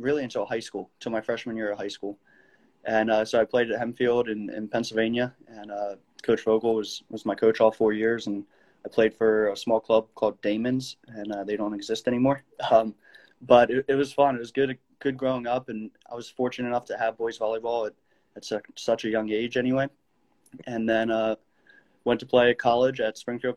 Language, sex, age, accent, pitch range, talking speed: English, male, 20-39, American, 110-130 Hz, 215 wpm